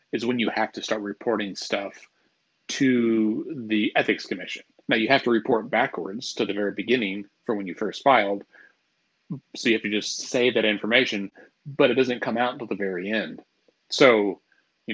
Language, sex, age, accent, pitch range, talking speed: English, male, 30-49, American, 100-120 Hz, 185 wpm